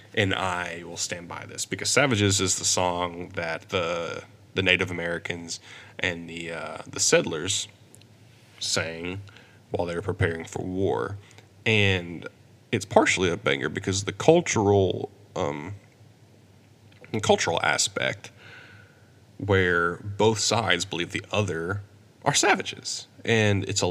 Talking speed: 125 wpm